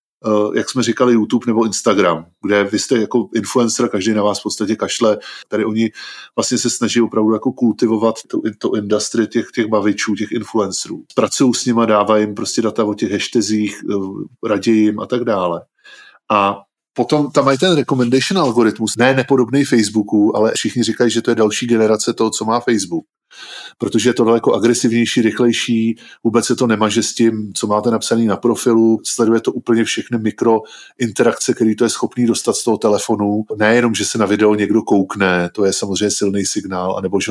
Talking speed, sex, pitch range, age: 185 wpm, male, 105-120 Hz, 20-39